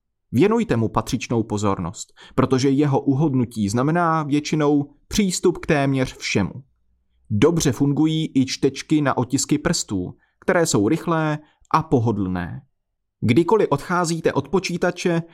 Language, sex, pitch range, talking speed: Czech, male, 115-155 Hz, 115 wpm